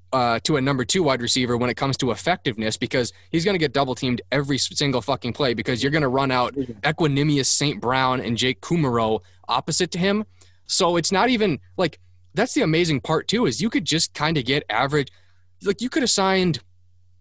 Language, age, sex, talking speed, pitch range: English, 20-39, male, 215 wpm, 120-160 Hz